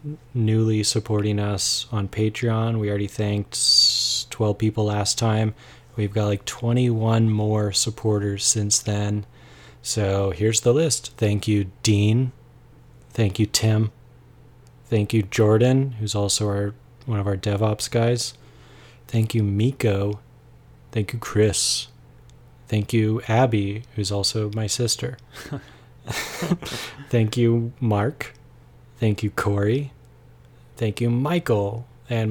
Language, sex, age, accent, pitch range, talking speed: English, male, 20-39, American, 105-120 Hz, 120 wpm